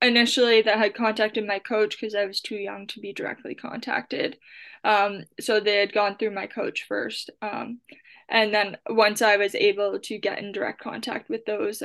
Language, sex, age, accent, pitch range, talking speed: English, female, 10-29, American, 205-225 Hz, 190 wpm